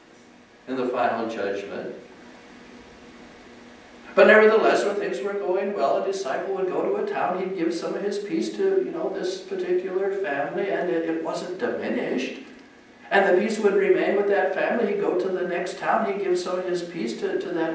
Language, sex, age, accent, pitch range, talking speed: English, male, 60-79, American, 180-210 Hz, 195 wpm